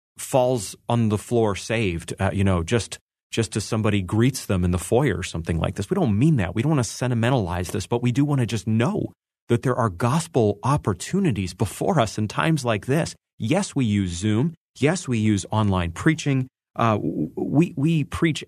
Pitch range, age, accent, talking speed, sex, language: 100-135 Hz, 30-49, American, 200 wpm, male, English